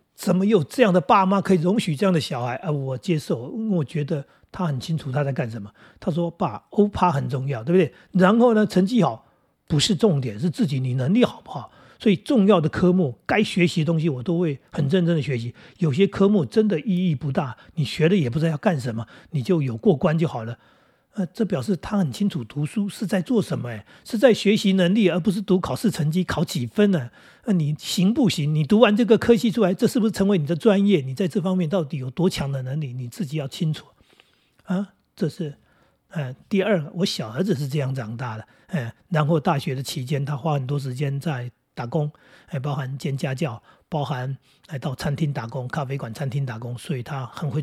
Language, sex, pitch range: Chinese, male, 140-190 Hz